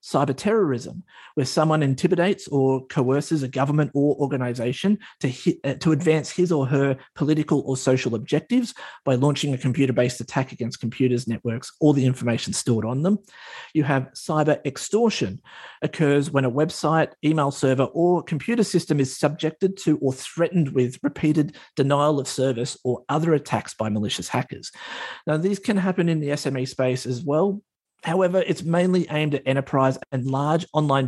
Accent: Australian